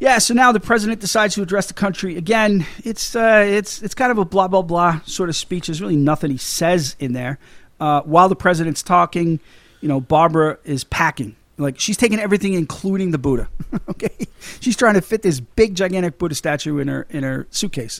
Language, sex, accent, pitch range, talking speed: English, male, American, 150-200 Hz, 210 wpm